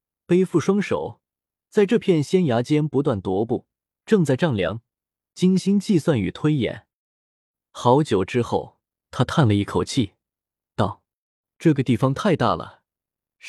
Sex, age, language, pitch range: male, 20-39, Chinese, 110-170 Hz